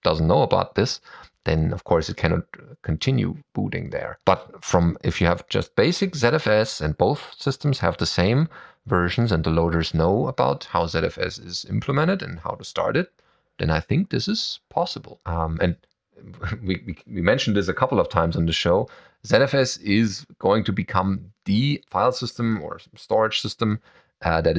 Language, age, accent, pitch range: English, 30-49, German, 90-145 Hz